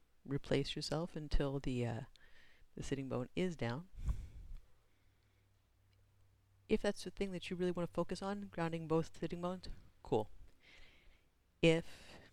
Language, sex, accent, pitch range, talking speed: English, female, American, 120-160 Hz, 130 wpm